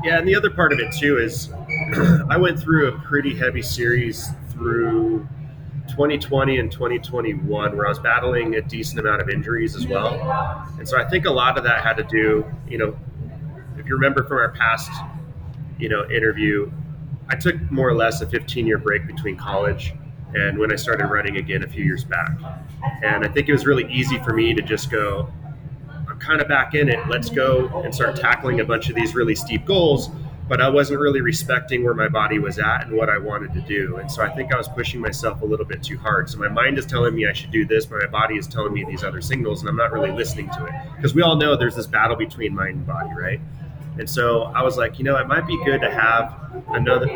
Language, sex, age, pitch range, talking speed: English, male, 30-49, 125-150 Hz, 235 wpm